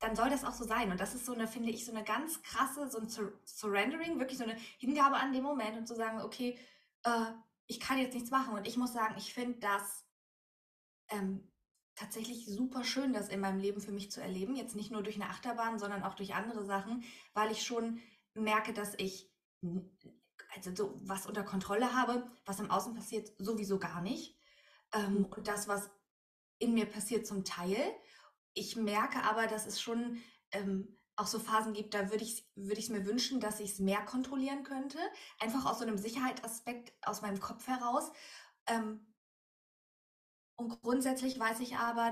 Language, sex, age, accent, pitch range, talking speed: German, female, 20-39, German, 205-245 Hz, 190 wpm